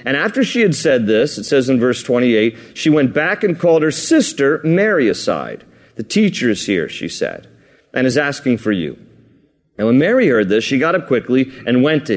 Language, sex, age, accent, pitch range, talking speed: English, male, 40-59, American, 130-170 Hz, 210 wpm